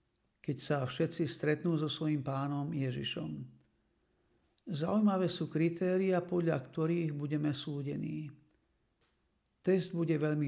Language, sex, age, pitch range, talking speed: Slovak, male, 50-69, 135-170 Hz, 105 wpm